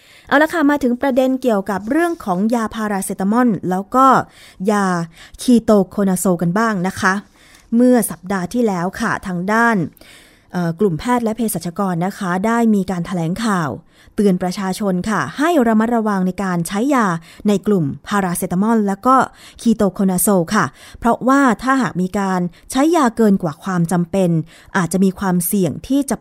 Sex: female